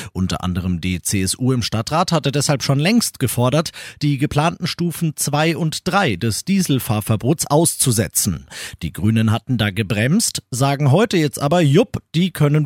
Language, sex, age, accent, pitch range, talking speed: German, male, 40-59, German, 125-170 Hz, 150 wpm